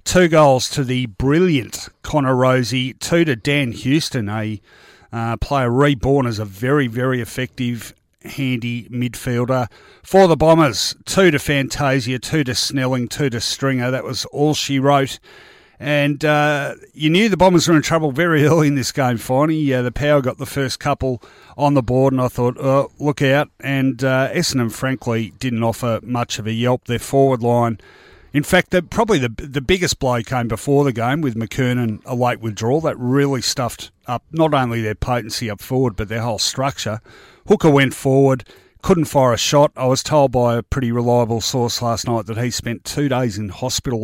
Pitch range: 115-140 Hz